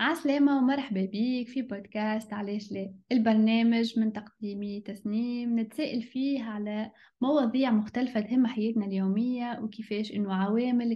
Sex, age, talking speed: female, 10-29, 115 wpm